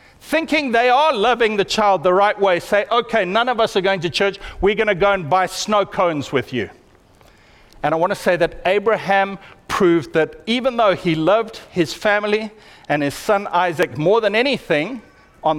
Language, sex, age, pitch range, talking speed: English, male, 50-69, 155-230 Hz, 190 wpm